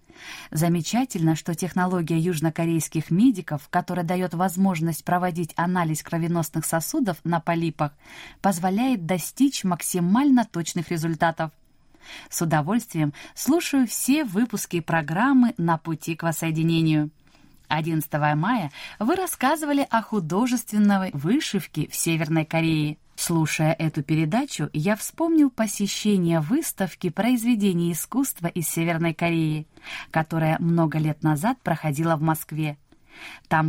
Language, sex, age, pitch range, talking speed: Russian, female, 20-39, 160-200 Hz, 105 wpm